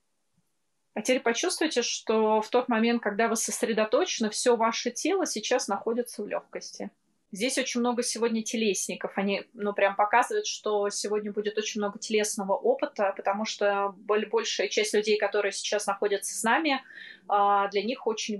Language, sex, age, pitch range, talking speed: Russian, female, 20-39, 205-230 Hz, 150 wpm